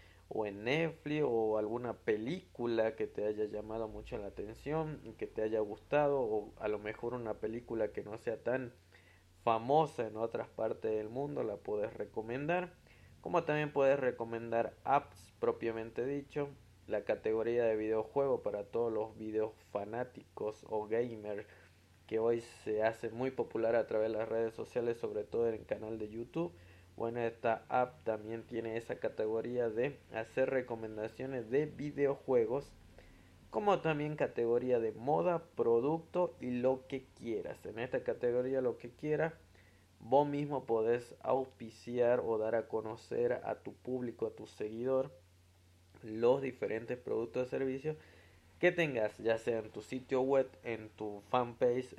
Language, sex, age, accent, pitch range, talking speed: Spanish, male, 20-39, Mexican, 110-135 Hz, 150 wpm